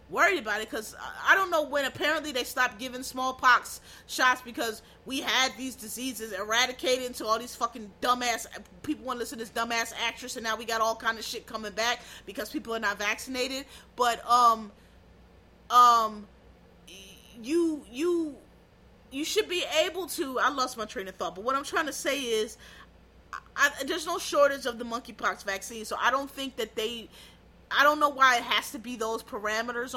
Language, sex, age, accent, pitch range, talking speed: English, female, 30-49, American, 235-310 Hz, 190 wpm